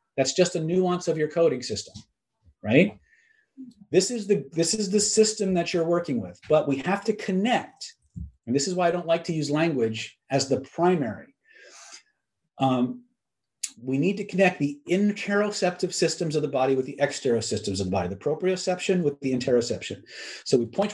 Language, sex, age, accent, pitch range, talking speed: English, male, 40-59, American, 140-200 Hz, 180 wpm